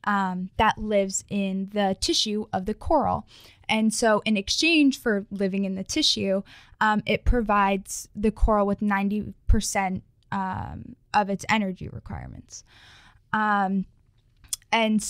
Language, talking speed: English, 125 wpm